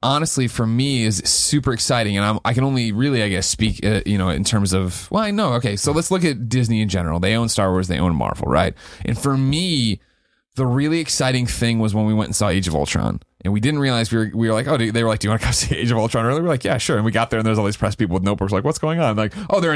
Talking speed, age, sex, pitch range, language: 310 wpm, 30-49, male, 100-135 Hz, English